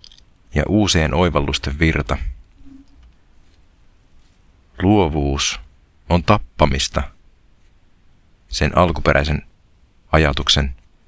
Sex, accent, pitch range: male, native, 70-85 Hz